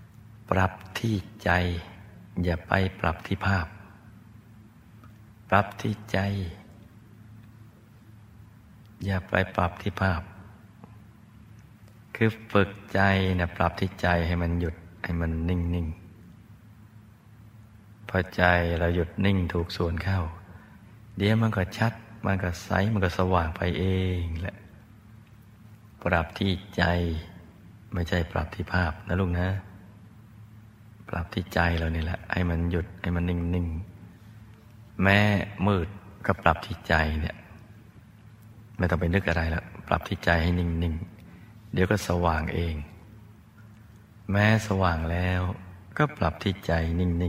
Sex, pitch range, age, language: male, 90-105 Hz, 60-79, Thai